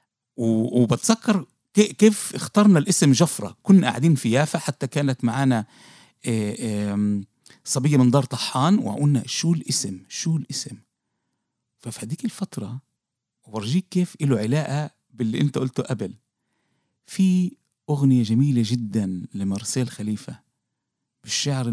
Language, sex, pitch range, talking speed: Arabic, male, 110-160 Hz, 110 wpm